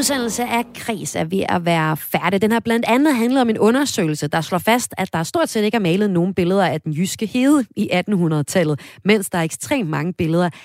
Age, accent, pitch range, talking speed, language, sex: 30-49, native, 160-220 Hz, 225 wpm, Danish, female